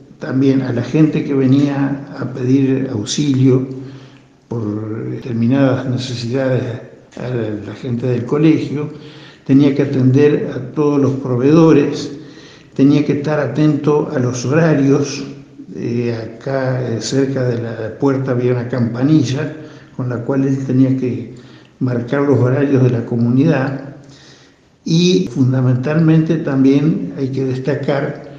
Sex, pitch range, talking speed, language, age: male, 125-145 Hz, 125 wpm, Spanish, 60-79